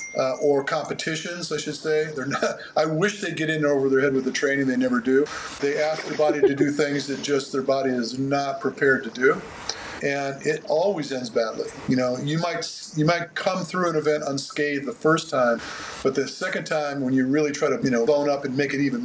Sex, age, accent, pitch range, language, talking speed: male, 50-69, American, 140-180 Hz, English, 235 wpm